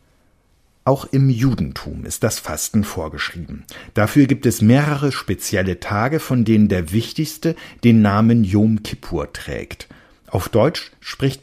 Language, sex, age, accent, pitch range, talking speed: German, male, 50-69, German, 100-135 Hz, 130 wpm